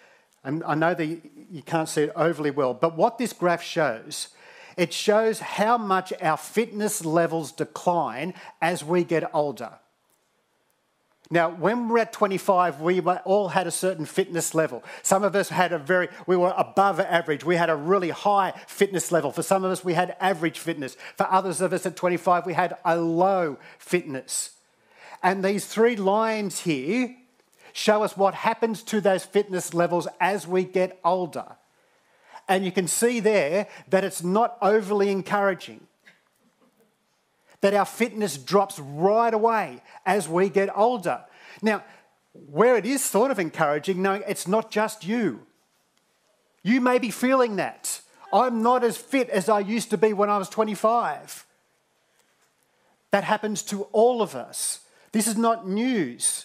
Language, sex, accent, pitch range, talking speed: English, male, Australian, 170-215 Hz, 160 wpm